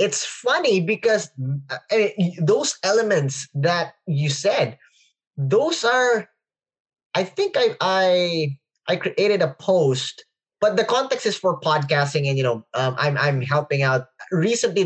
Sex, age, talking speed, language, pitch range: male, 20-39, 135 wpm, English, 135-180 Hz